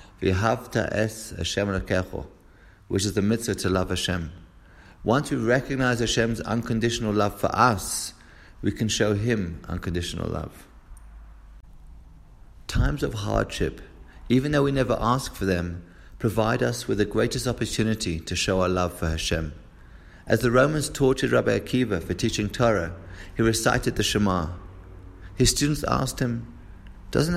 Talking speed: 135 wpm